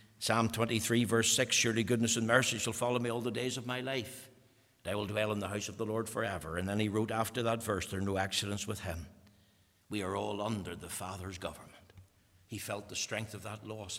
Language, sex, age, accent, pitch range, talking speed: English, male, 60-79, Irish, 100-120 Hz, 235 wpm